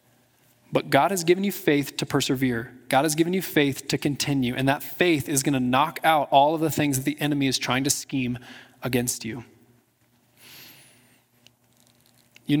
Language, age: English, 20-39